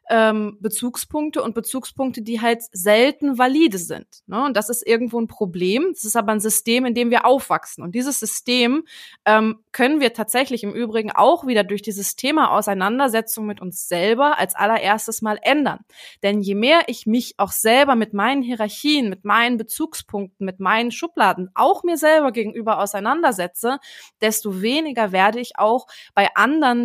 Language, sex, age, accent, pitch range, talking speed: German, female, 20-39, German, 205-245 Hz, 160 wpm